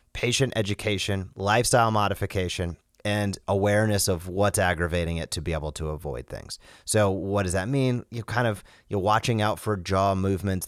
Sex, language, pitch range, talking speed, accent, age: male, English, 90-115 Hz, 170 wpm, American, 30-49